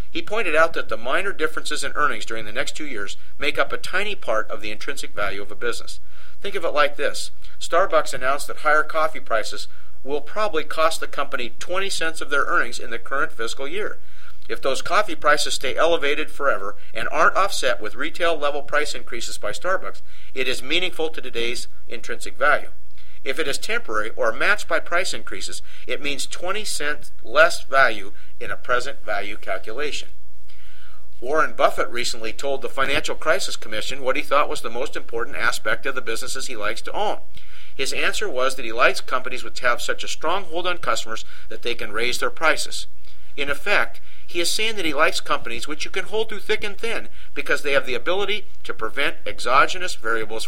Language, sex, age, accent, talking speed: English, male, 50-69, American, 195 wpm